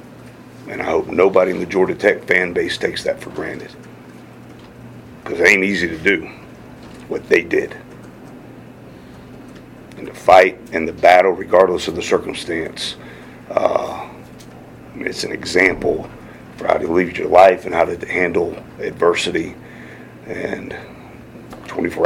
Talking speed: 135 wpm